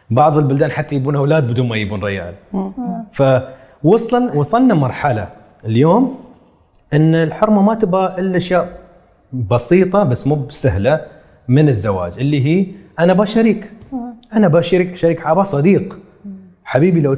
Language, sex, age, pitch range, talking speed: English, male, 30-49, 110-170 Hz, 125 wpm